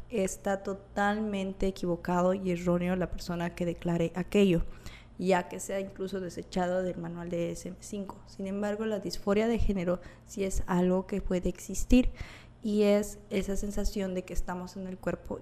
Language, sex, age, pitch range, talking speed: Spanish, female, 20-39, 175-200 Hz, 160 wpm